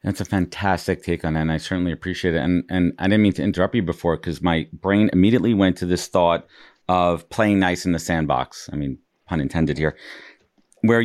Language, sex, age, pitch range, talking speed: English, male, 40-59, 90-120 Hz, 215 wpm